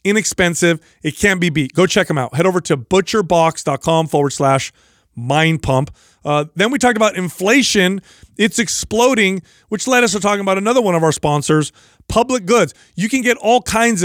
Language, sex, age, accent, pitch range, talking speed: English, male, 30-49, American, 155-205 Hz, 185 wpm